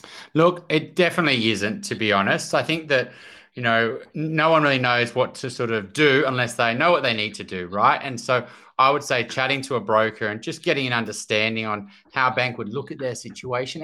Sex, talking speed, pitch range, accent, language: male, 230 wpm, 115-145 Hz, Australian, English